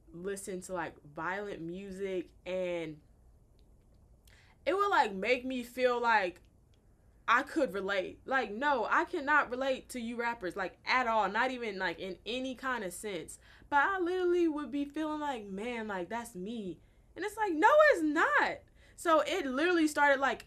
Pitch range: 195-280 Hz